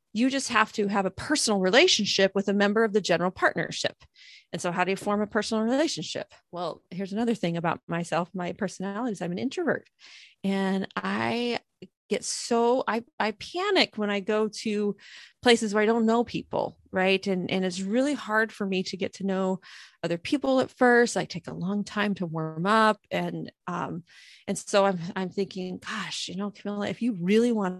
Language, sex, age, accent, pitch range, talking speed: English, female, 30-49, American, 185-225 Hz, 200 wpm